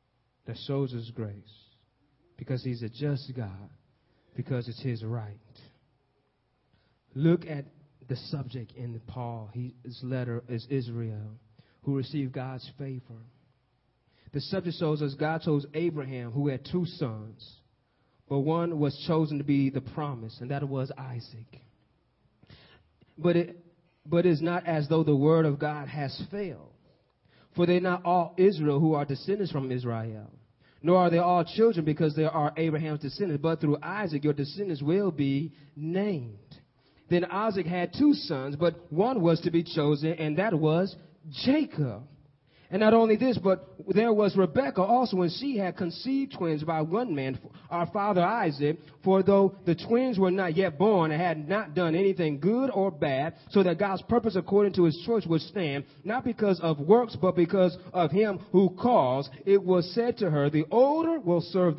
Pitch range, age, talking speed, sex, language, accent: 135-185 Hz, 30-49, 165 wpm, male, English, American